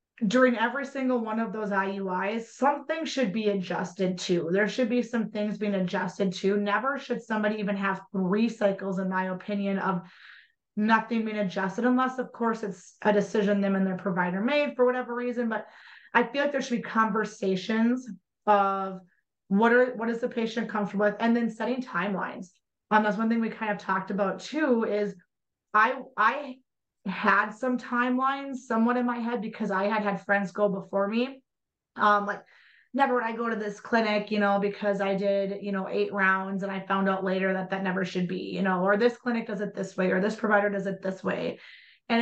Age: 30-49